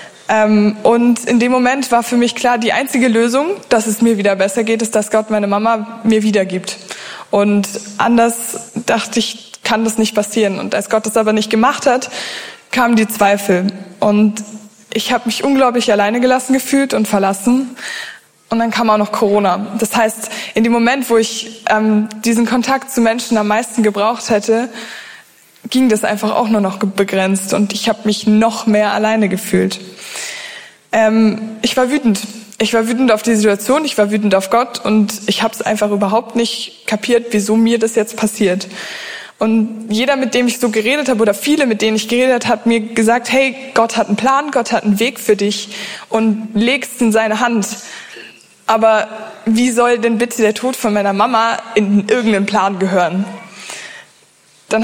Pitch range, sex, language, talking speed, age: 210-240 Hz, female, German, 180 wpm, 20-39